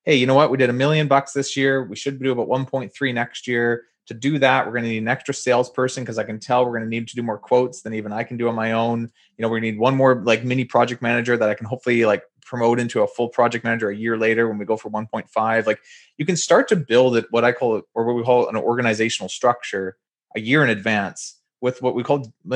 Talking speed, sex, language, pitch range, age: 270 wpm, male, English, 115-140 Hz, 30-49